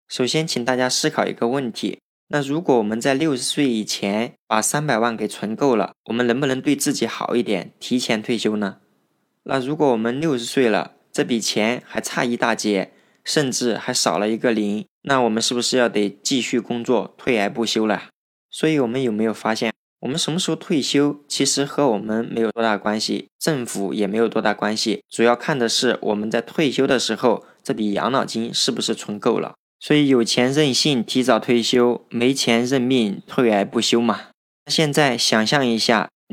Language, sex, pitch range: Chinese, male, 110-135 Hz